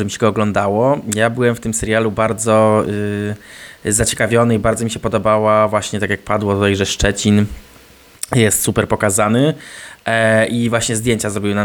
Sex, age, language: male, 20-39, Polish